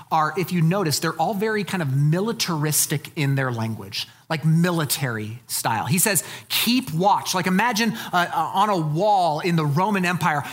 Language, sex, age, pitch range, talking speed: English, male, 30-49, 135-205 Hz, 175 wpm